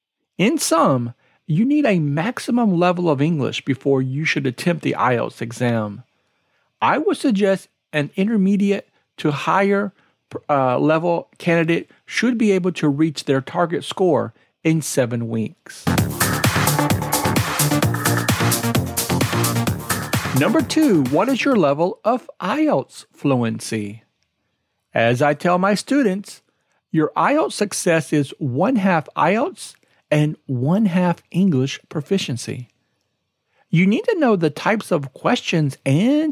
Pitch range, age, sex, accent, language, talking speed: 135-200 Hz, 50-69, male, American, English, 115 wpm